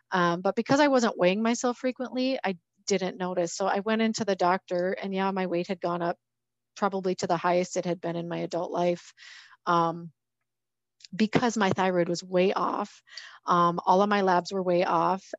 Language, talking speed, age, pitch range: English, 195 wpm, 30-49, 180-225 Hz